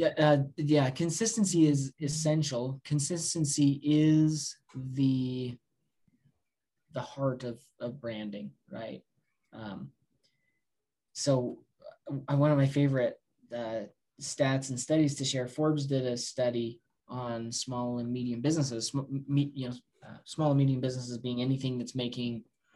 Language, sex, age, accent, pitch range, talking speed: English, male, 20-39, American, 120-150 Hz, 130 wpm